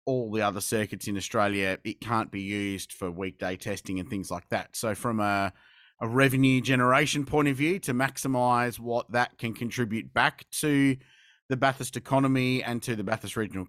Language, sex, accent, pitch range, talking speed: English, male, Australian, 105-130 Hz, 185 wpm